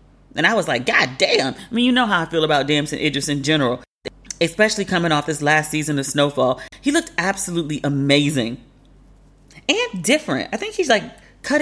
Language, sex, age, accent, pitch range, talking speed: English, female, 30-49, American, 145-215 Hz, 190 wpm